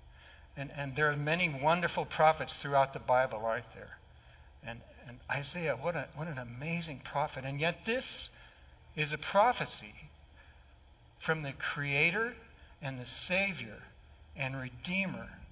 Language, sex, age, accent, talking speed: English, male, 60-79, American, 130 wpm